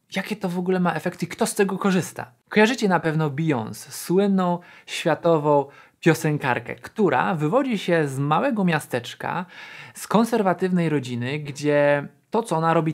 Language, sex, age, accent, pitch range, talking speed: Polish, male, 20-39, native, 145-195 Hz, 150 wpm